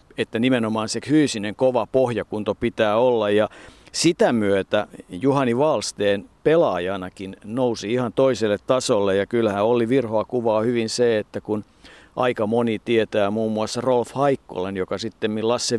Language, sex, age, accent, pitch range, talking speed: Finnish, male, 50-69, native, 105-130 Hz, 140 wpm